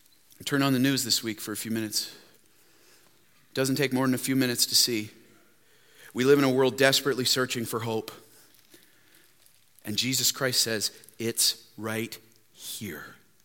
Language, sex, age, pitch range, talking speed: English, male, 40-59, 110-125 Hz, 160 wpm